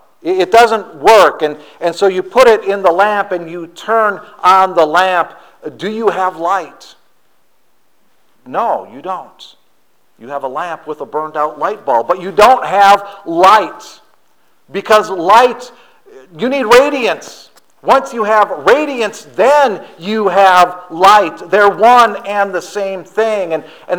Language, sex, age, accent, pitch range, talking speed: English, male, 50-69, American, 165-225 Hz, 155 wpm